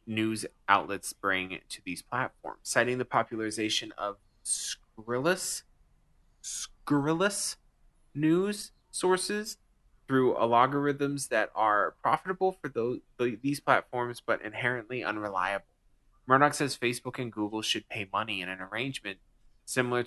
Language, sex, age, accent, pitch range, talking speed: English, male, 20-39, American, 100-125 Hz, 115 wpm